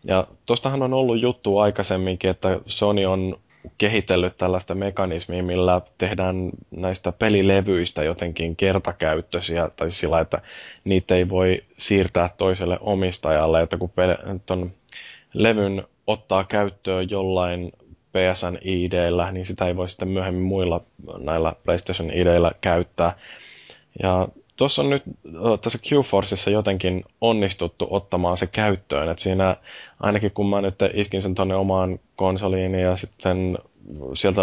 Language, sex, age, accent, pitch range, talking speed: Finnish, male, 20-39, native, 90-100 Hz, 120 wpm